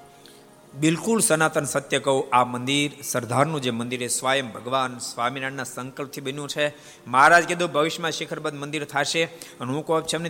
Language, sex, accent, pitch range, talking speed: Gujarati, male, native, 135-180 Hz, 140 wpm